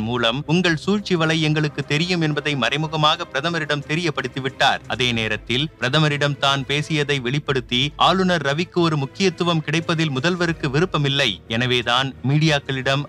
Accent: native